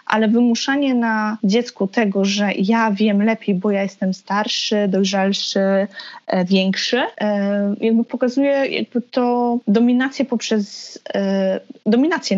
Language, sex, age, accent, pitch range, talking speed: Polish, female, 20-39, native, 205-245 Hz, 100 wpm